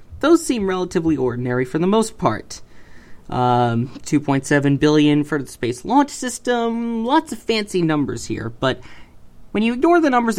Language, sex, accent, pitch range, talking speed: English, male, American, 125-195 Hz, 155 wpm